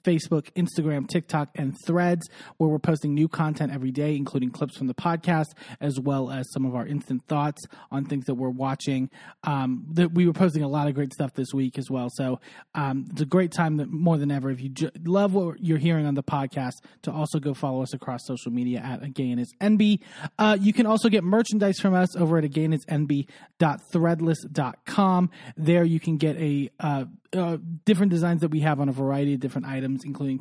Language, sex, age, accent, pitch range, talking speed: English, male, 30-49, American, 135-170 Hz, 205 wpm